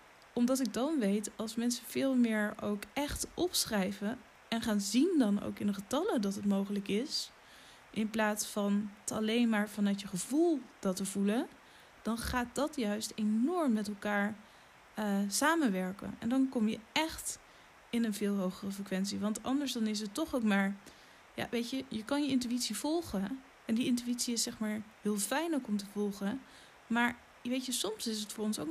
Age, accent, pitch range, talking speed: 10-29, Dutch, 205-255 Hz, 190 wpm